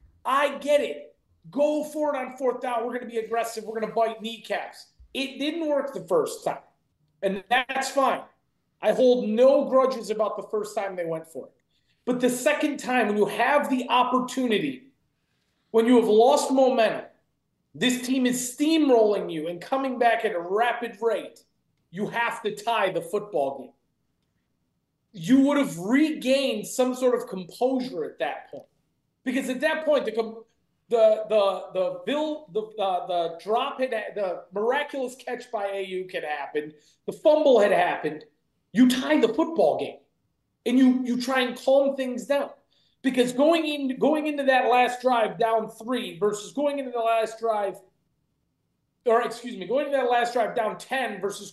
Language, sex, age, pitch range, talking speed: English, male, 30-49, 215-270 Hz, 175 wpm